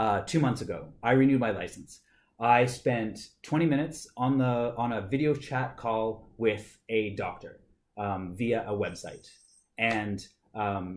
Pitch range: 105-130 Hz